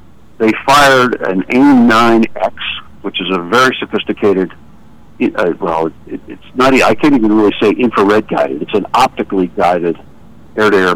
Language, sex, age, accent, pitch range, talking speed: English, male, 60-79, American, 95-115 Hz, 140 wpm